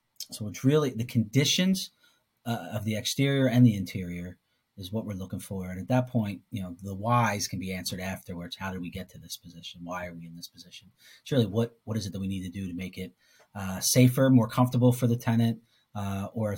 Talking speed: 230 wpm